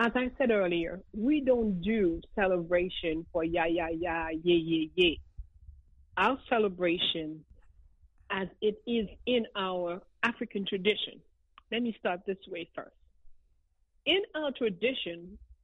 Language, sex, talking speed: English, female, 125 wpm